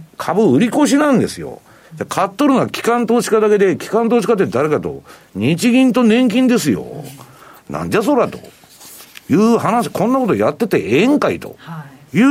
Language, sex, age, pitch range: Japanese, male, 50-69, 125-215 Hz